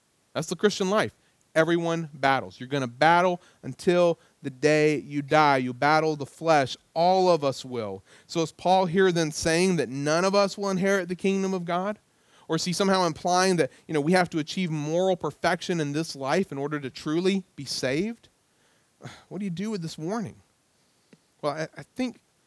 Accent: American